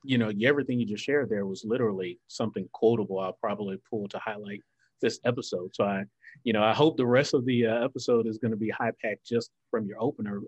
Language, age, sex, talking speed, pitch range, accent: English, 30-49, male, 225 wpm, 105-130 Hz, American